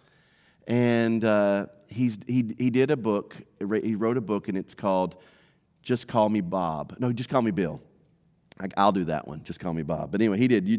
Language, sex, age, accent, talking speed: English, male, 40-59, American, 210 wpm